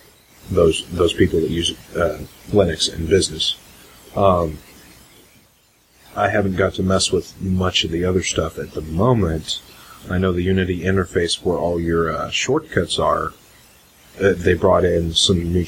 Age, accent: 30-49, American